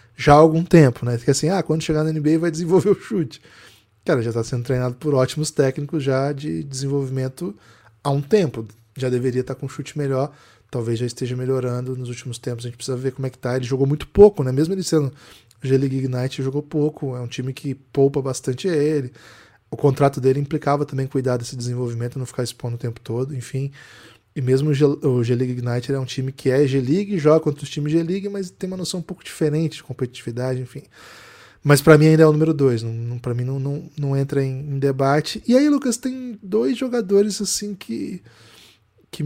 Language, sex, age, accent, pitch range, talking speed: Portuguese, male, 20-39, Brazilian, 130-160 Hz, 220 wpm